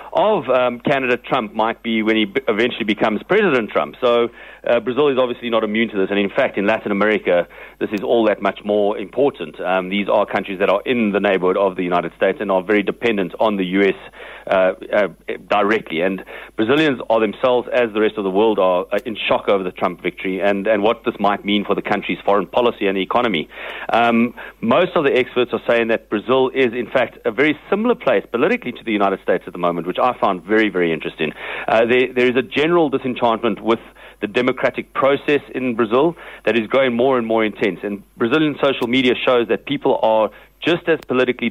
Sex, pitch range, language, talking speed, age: male, 105-130 Hz, English, 215 wpm, 40-59